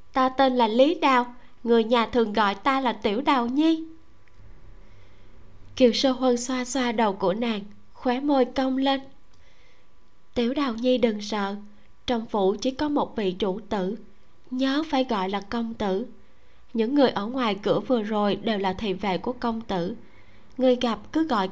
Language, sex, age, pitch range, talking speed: Vietnamese, female, 20-39, 195-255 Hz, 175 wpm